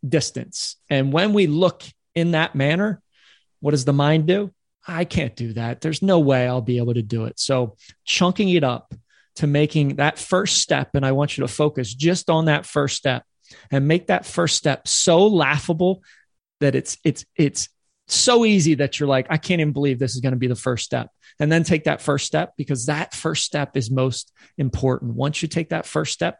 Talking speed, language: 210 wpm, English